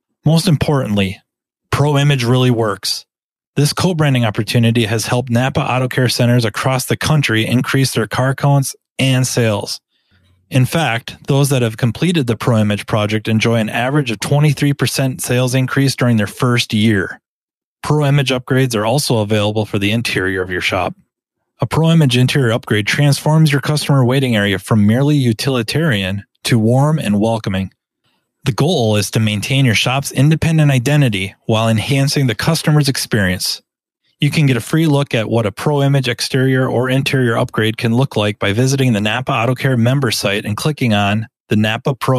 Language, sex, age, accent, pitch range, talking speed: English, male, 30-49, American, 110-140 Hz, 165 wpm